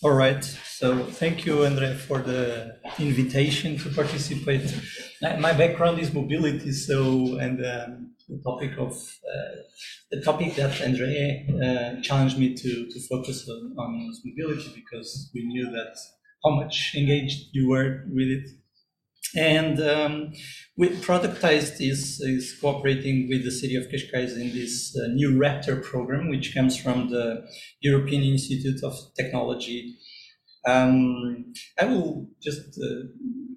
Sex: male